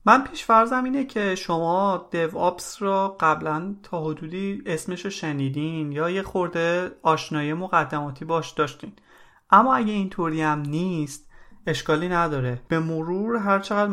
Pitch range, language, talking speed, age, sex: 145-185 Hz, Persian, 125 wpm, 30-49, male